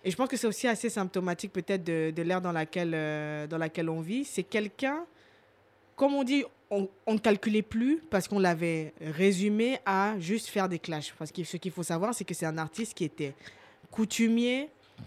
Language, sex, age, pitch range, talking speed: French, female, 20-39, 165-210 Hz, 205 wpm